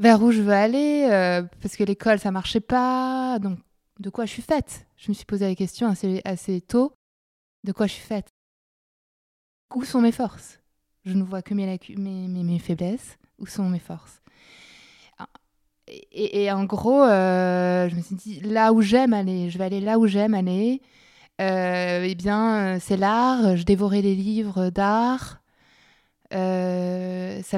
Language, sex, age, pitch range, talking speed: French, female, 20-39, 185-230 Hz, 175 wpm